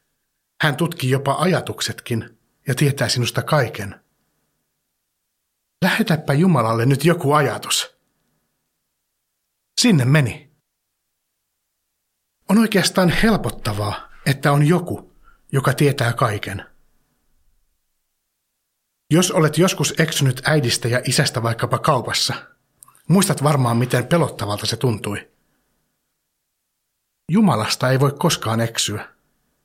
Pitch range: 115-160 Hz